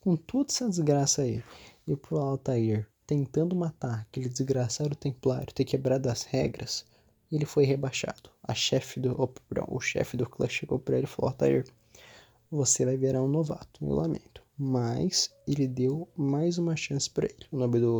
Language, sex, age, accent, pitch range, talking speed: Portuguese, male, 20-39, Brazilian, 125-150 Hz, 175 wpm